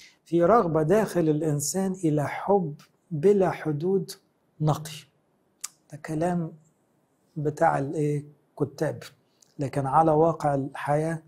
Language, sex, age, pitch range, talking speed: English, male, 60-79, 135-170 Hz, 90 wpm